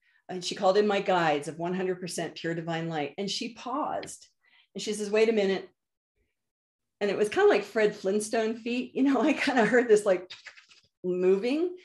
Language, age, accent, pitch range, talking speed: English, 40-59, American, 185-235 Hz, 190 wpm